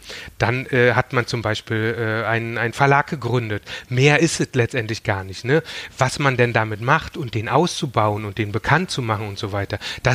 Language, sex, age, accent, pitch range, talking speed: German, male, 30-49, German, 110-135 Hz, 205 wpm